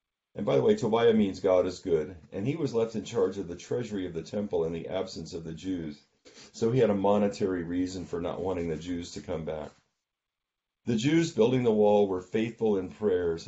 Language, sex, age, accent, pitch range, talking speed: English, male, 40-59, American, 90-105 Hz, 225 wpm